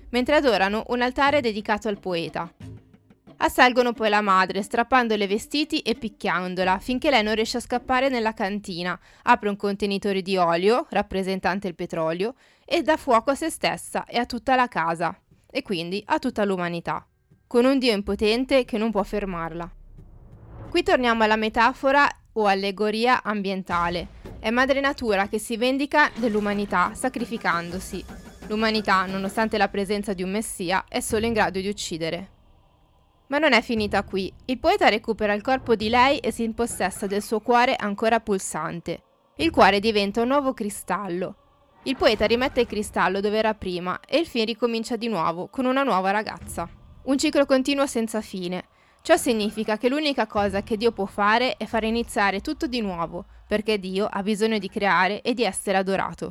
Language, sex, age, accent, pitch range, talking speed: Italian, female, 20-39, native, 195-245 Hz, 170 wpm